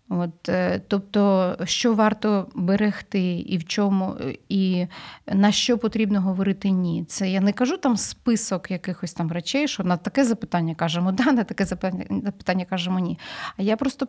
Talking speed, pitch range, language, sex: 160 wpm, 185-240 Hz, Ukrainian, female